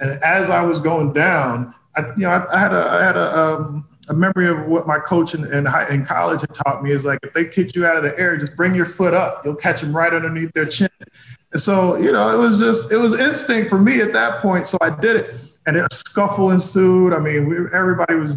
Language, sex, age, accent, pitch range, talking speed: English, male, 20-39, American, 140-180 Hz, 265 wpm